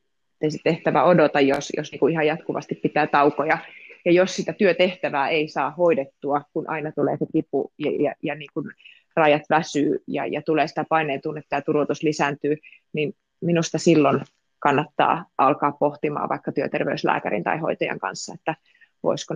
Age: 20-39